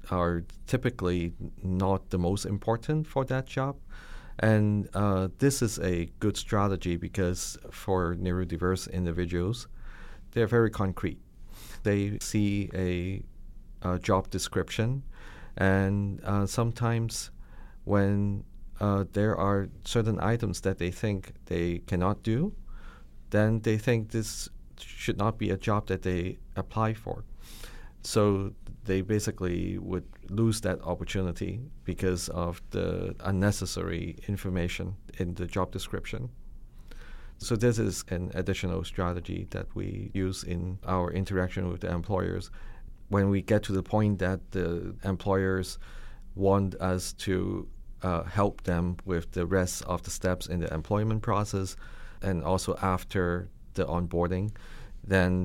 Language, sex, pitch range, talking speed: English, male, 90-105 Hz, 130 wpm